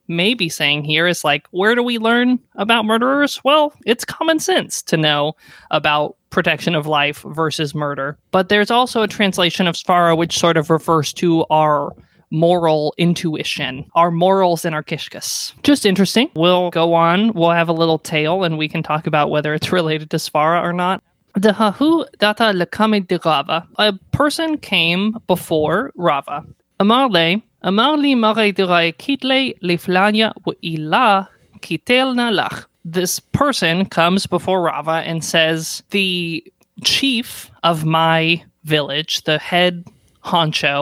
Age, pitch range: 20-39, 160-205 Hz